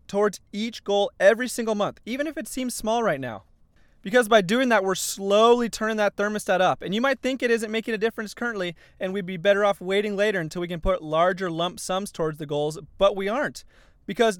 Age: 20-39